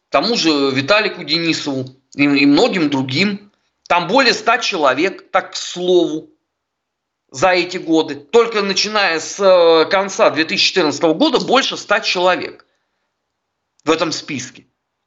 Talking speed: 120 wpm